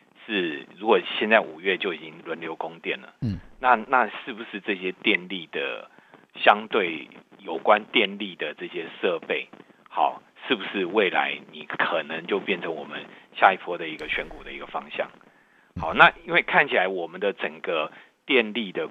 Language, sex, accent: Chinese, male, native